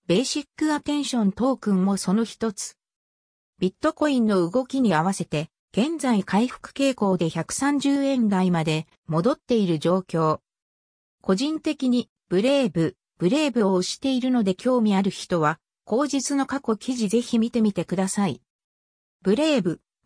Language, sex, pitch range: Japanese, female, 185-265 Hz